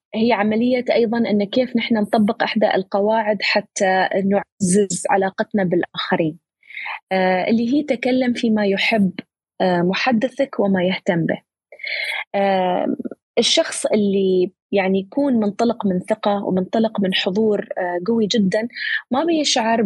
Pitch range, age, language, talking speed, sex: 195-250 Hz, 20-39, Arabic, 115 wpm, female